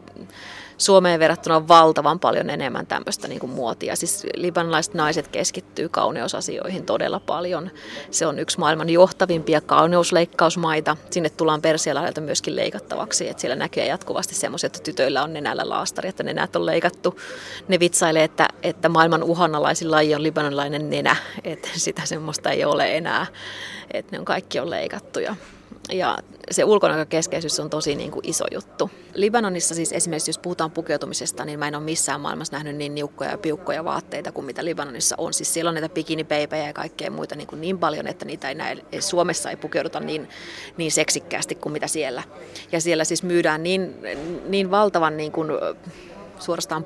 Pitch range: 155-175 Hz